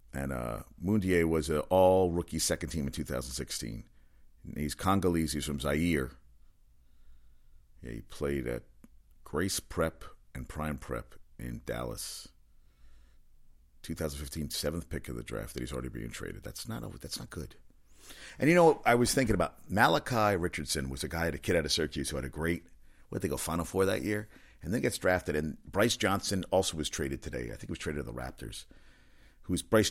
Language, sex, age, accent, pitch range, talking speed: English, male, 50-69, American, 70-100 Hz, 190 wpm